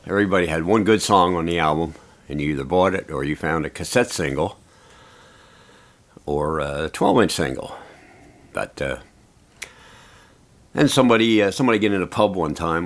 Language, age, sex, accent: English, 60-79, male, American